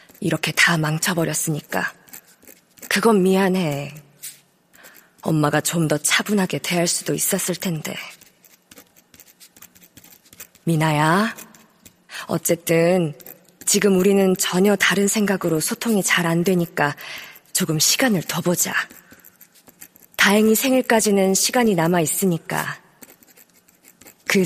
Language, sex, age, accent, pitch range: Korean, female, 20-39, native, 165-210 Hz